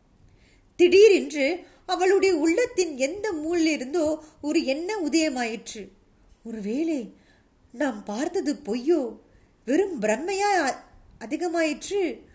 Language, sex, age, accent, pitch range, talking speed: Tamil, female, 20-39, native, 250-340 Hz, 75 wpm